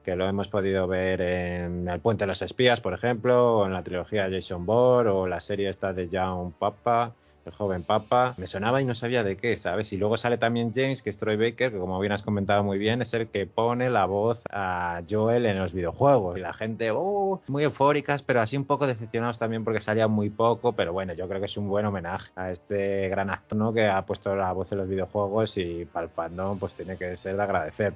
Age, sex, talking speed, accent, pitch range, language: 20-39, male, 240 wpm, Spanish, 95-115 Hz, Spanish